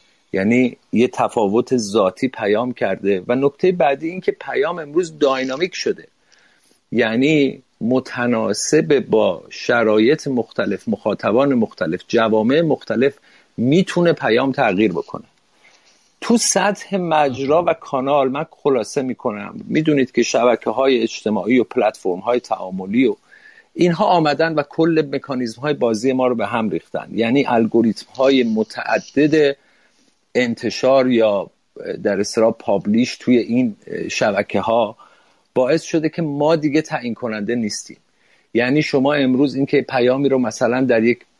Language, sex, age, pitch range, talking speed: Persian, male, 50-69, 120-155 Hz, 125 wpm